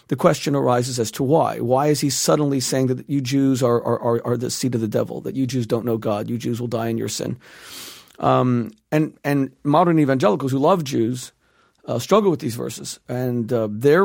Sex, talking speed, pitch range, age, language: male, 220 wpm, 125-170 Hz, 50-69, English